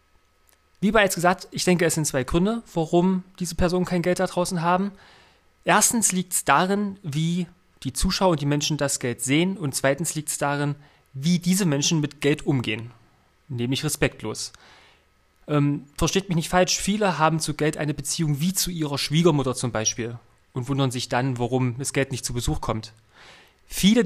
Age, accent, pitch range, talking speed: 30-49, German, 130-170 Hz, 180 wpm